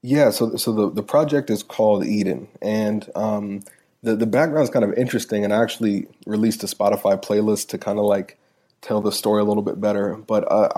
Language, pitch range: English, 105-110 Hz